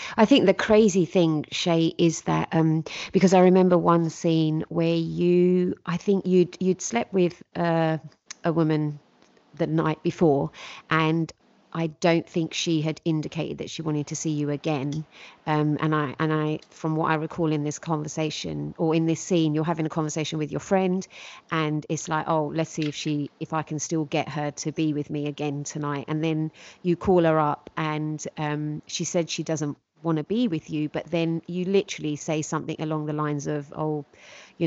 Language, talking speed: English, 200 wpm